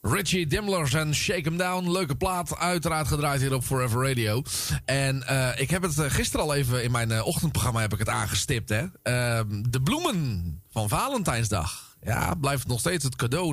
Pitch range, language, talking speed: 115-160 Hz, Dutch, 190 wpm